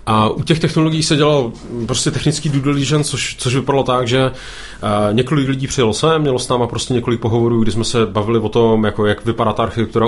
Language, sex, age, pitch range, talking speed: Czech, male, 30-49, 115-140 Hz, 220 wpm